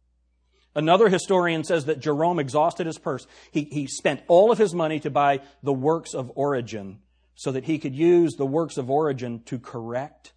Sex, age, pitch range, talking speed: male, 40-59, 130-210 Hz, 185 wpm